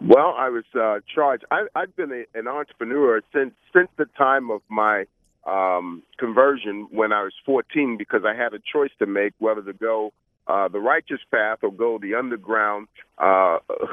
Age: 50-69